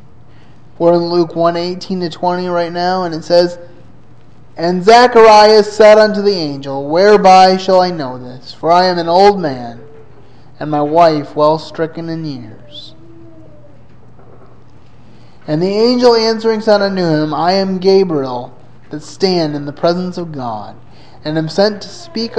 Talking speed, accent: 155 wpm, American